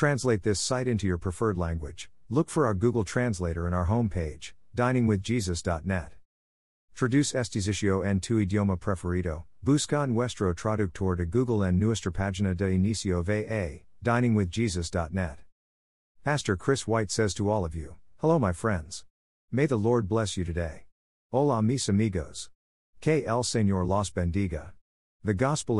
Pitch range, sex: 90-115 Hz, male